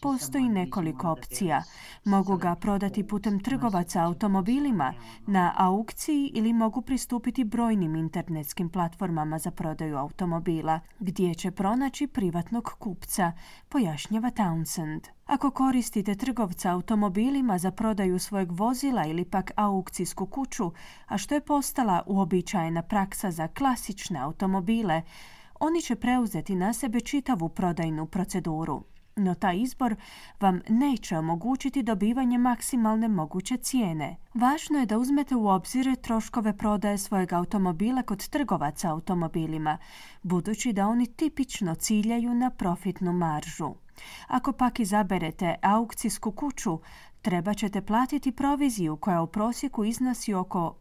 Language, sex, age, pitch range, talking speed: Croatian, female, 30-49, 175-240 Hz, 120 wpm